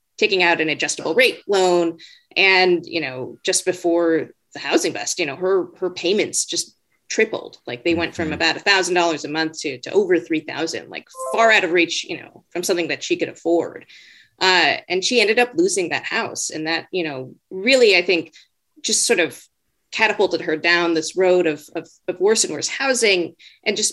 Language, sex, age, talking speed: English, female, 30-49, 195 wpm